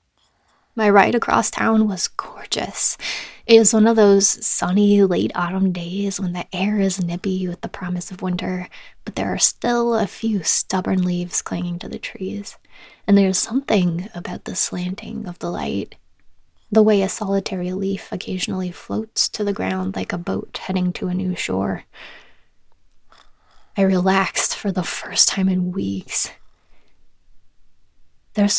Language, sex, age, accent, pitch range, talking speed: English, female, 20-39, American, 185-220 Hz, 155 wpm